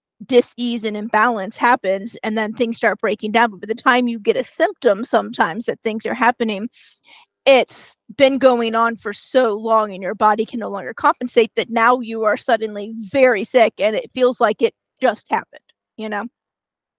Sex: female